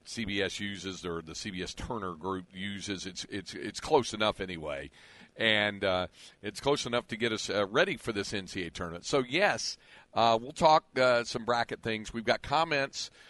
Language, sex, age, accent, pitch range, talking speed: English, male, 50-69, American, 100-115 Hz, 180 wpm